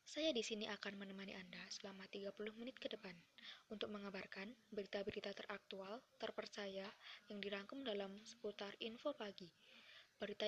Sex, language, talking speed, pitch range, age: female, Indonesian, 130 wpm, 200-225 Hz, 20-39